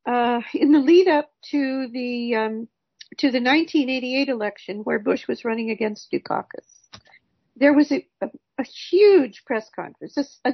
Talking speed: 170 wpm